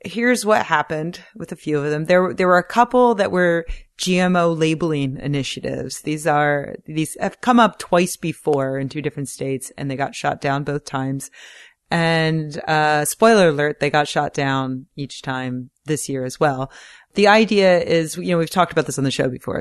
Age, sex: 30-49, female